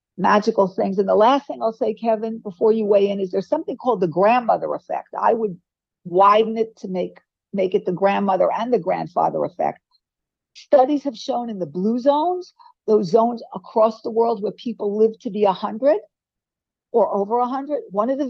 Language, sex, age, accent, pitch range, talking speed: English, female, 50-69, American, 200-265 Hz, 195 wpm